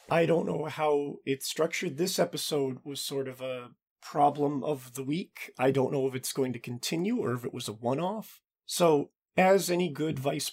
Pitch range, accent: 135-195 Hz, American